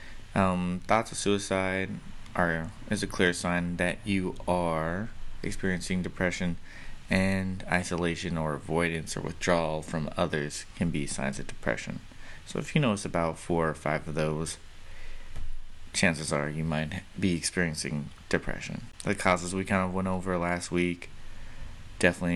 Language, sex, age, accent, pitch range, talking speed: English, male, 20-39, American, 85-100 Hz, 145 wpm